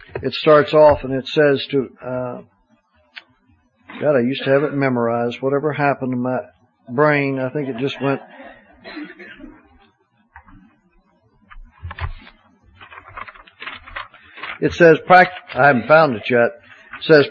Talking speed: 120 wpm